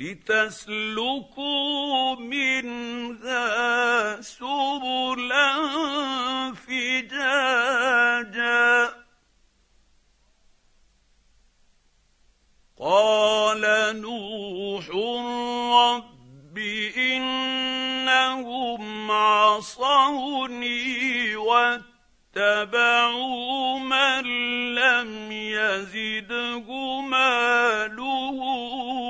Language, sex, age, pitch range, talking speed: Arabic, male, 50-69, 215-260 Hz, 30 wpm